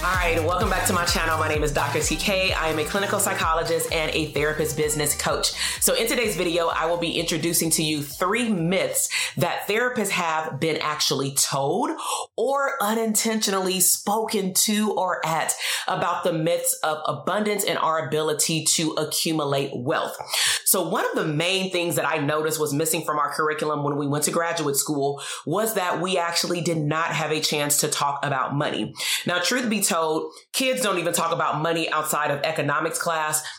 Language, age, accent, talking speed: English, 30-49, American, 185 wpm